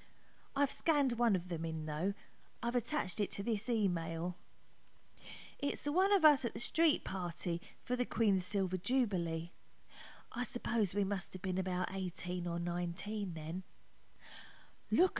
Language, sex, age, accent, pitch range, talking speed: English, female, 40-59, British, 170-235 Hz, 155 wpm